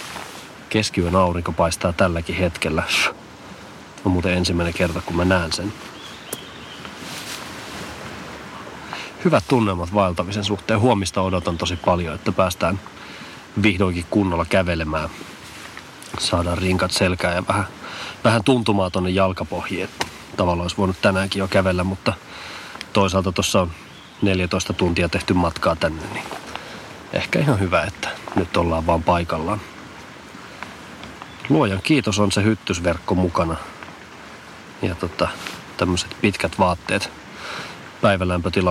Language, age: Finnish, 30-49